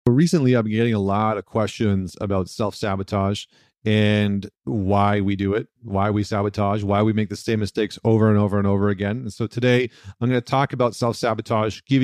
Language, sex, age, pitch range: English, male, 40-59, 100-120 Hz